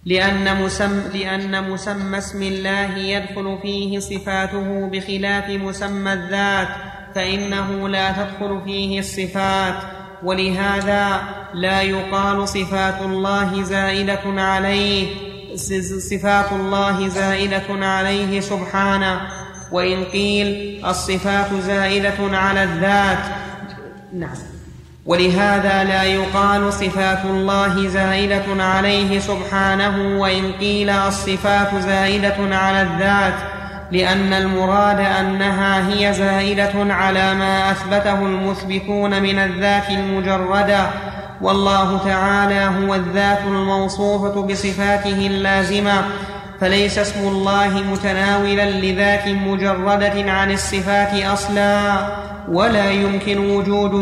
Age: 30-49